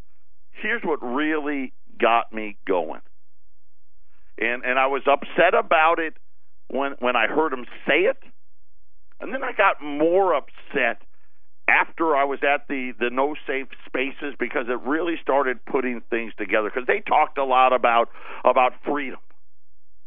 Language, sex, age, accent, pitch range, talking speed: English, male, 50-69, American, 110-150 Hz, 150 wpm